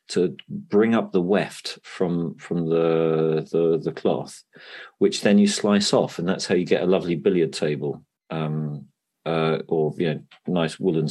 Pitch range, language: 85-105 Hz, English